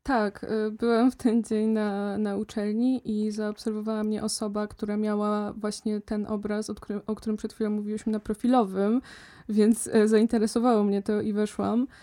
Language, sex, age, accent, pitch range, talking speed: Polish, female, 20-39, native, 210-225 Hz, 160 wpm